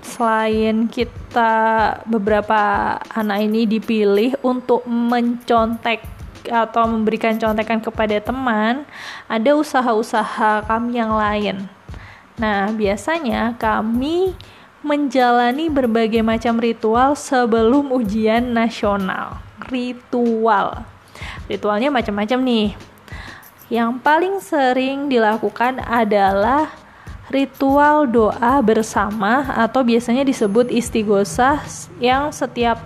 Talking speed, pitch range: 85 wpm, 215-255 Hz